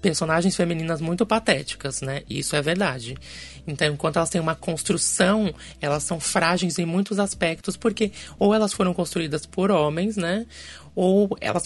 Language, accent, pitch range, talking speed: Portuguese, Brazilian, 155-205 Hz, 155 wpm